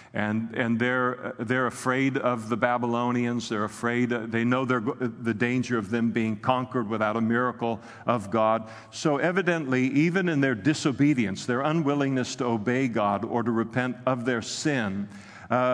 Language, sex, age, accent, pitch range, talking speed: English, male, 50-69, American, 115-135 Hz, 160 wpm